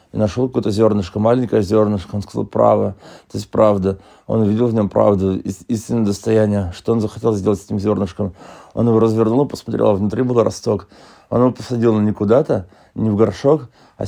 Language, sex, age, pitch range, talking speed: Russian, male, 30-49, 105-120 Hz, 190 wpm